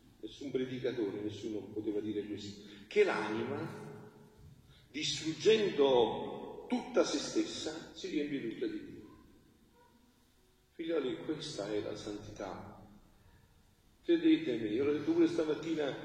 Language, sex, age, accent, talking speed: Italian, male, 40-59, native, 105 wpm